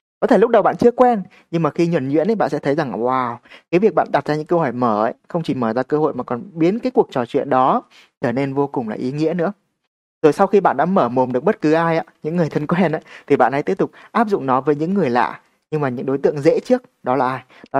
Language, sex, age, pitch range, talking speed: Vietnamese, male, 20-39, 125-165 Hz, 290 wpm